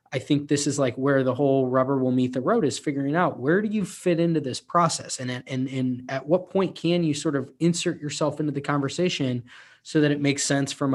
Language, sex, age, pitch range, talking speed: English, male, 20-39, 130-160 Hz, 235 wpm